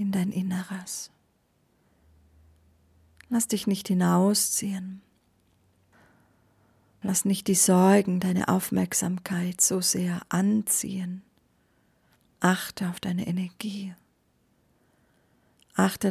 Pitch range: 180-200 Hz